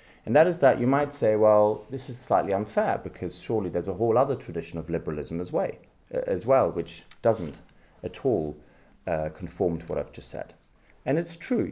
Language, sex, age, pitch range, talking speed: English, male, 30-49, 80-115 Hz, 190 wpm